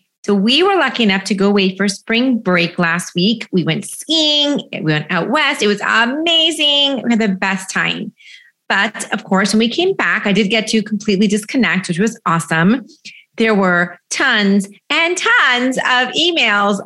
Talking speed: 180 wpm